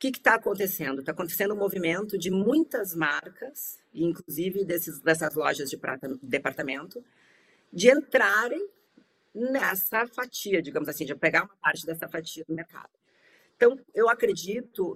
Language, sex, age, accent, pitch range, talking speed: Portuguese, female, 40-59, Brazilian, 155-205 Hz, 140 wpm